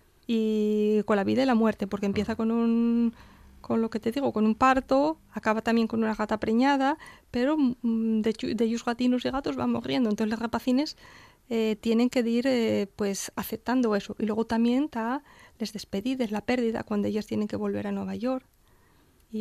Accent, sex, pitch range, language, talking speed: Spanish, female, 210-235 Hz, Spanish, 195 wpm